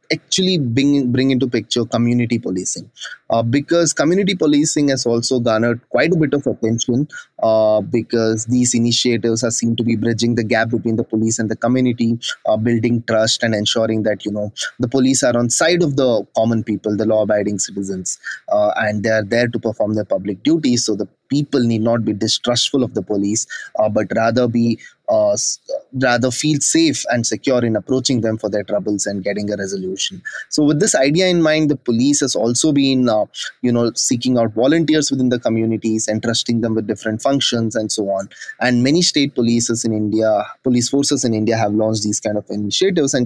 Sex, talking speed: male, 195 wpm